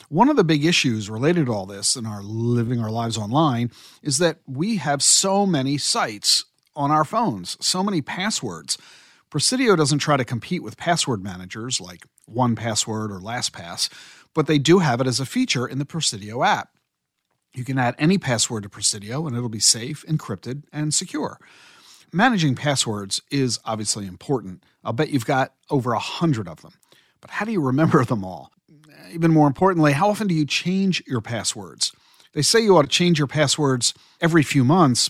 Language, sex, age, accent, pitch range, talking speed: English, male, 50-69, American, 120-165 Hz, 185 wpm